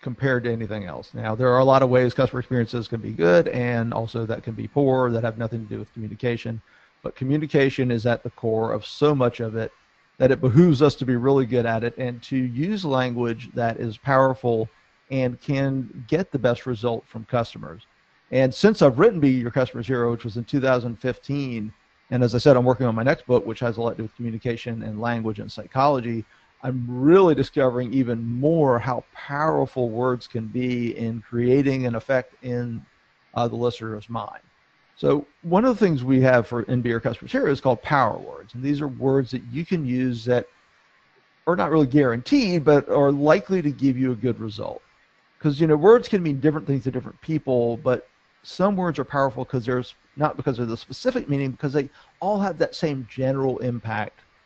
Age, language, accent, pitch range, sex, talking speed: 40-59, English, American, 115-140 Hz, male, 205 wpm